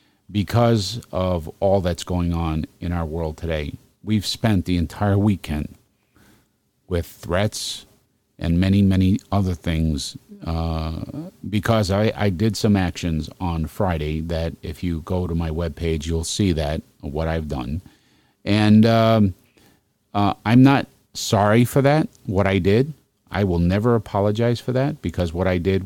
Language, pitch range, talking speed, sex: English, 80-105 Hz, 155 wpm, male